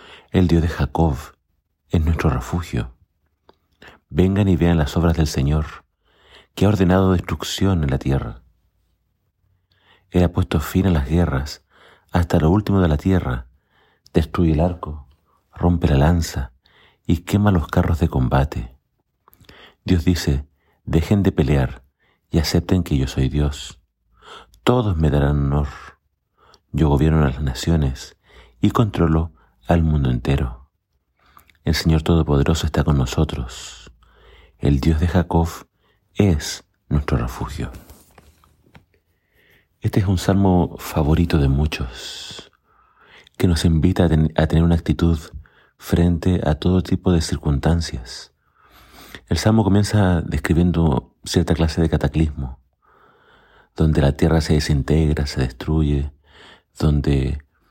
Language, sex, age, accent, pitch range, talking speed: Spanish, male, 50-69, Argentinian, 75-90 Hz, 125 wpm